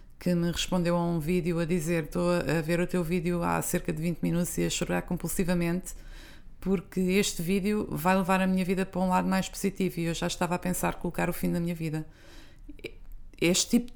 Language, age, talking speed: Portuguese, 20-39, 215 wpm